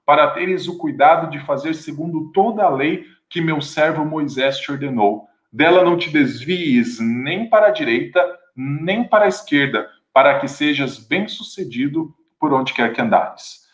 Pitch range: 145-205 Hz